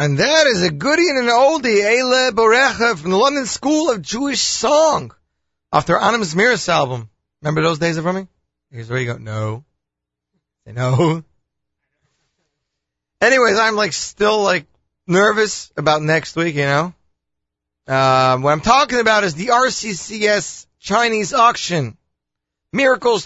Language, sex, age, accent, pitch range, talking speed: English, male, 30-49, American, 115-195 Hz, 140 wpm